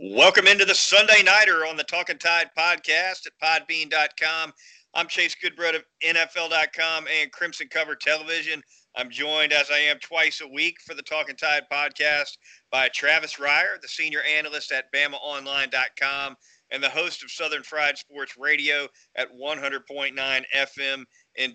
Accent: American